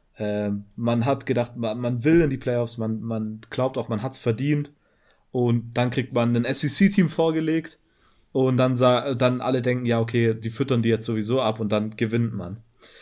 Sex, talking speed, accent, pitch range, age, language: male, 190 wpm, German, 115-130 Hz, 30-49, German